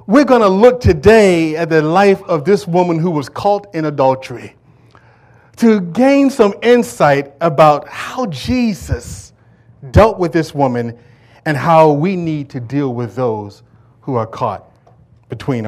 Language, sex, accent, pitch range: English, male, American, 120-160 Hz